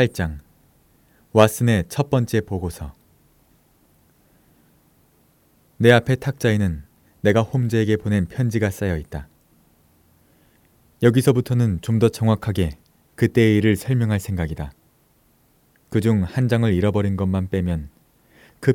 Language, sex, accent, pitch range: Korean, male, native, 85-115 Hz